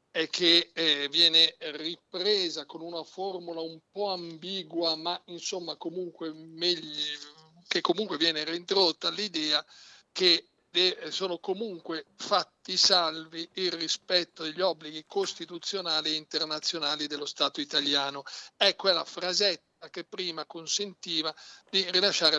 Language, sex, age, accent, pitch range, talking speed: Italian, male, 50-69, native, 160-195 Hz, 115 wpm